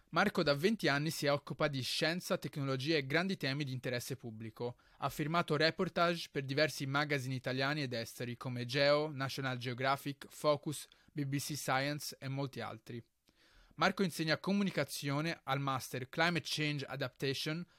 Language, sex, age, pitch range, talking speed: Italian, male, 20-39, 135-170 Hz, 140 wpm